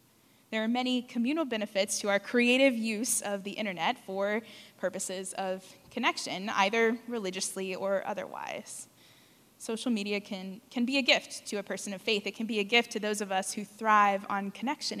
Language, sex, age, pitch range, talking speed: English, female, 20-39, 200-240 Hz, 180 wpm